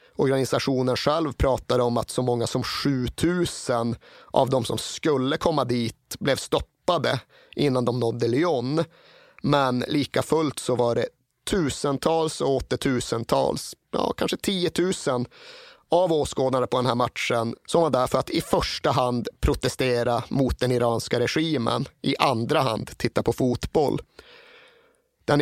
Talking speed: 140 wpm